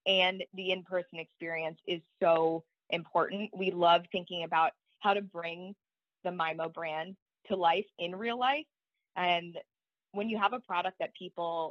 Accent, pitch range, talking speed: American, 165-195 Hz, 155 wpm